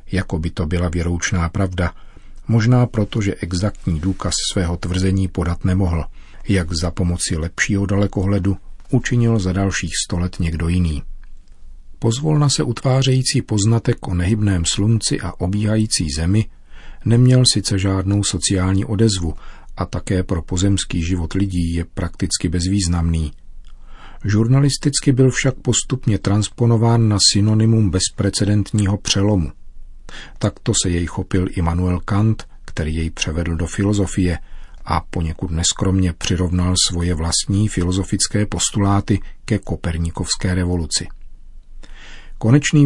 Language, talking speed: Czech, 115 wpm